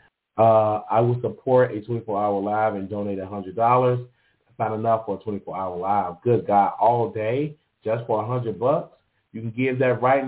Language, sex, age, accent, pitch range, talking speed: English, male, 30-49, American, 115-160 Hz, 205 wpm